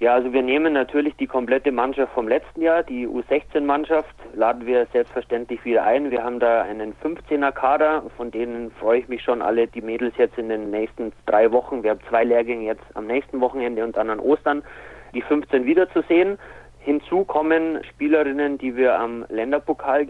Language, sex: German, male